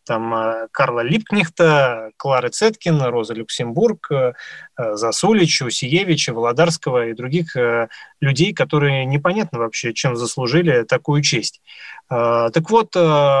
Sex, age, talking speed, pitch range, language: male, 20-39, 100 wpm, 130-170 Hz, Russian